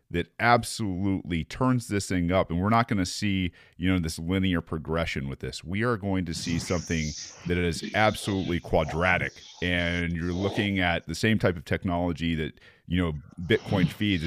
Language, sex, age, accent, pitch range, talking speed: English, male, 40-59, American, 85-105 Hz, 175 wpm